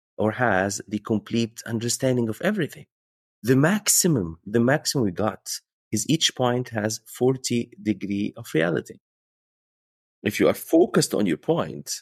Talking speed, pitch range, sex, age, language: 140 wpm, 100-140 Hz, male, 30-49, Danish